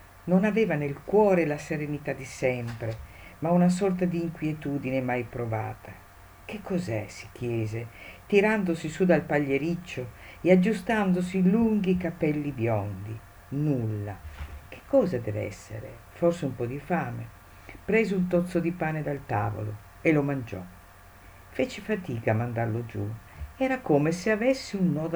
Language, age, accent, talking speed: Italian, 50-69, native, 145 wpm